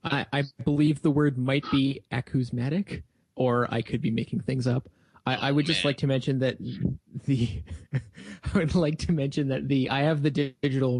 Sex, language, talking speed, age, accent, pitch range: male, English, 190 wpm, 30-49, American, 120-145 Hz